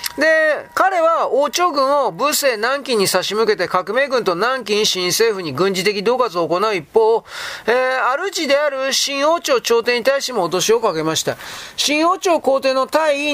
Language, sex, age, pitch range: Japanese, male, 40-59, 215-285 Hz